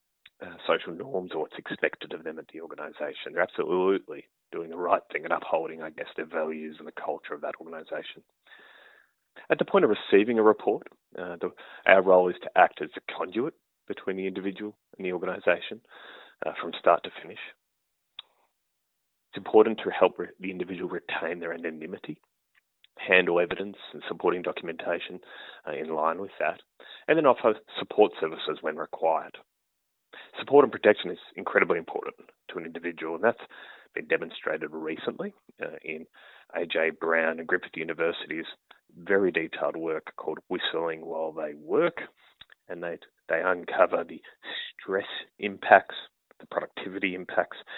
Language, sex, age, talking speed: English, male, 30-49, 150 wpm